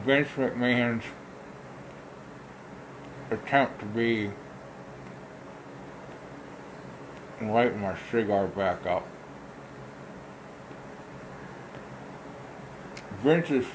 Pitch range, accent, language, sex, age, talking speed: 70-110 Hz, American, English, male, 60-79, 50 wpm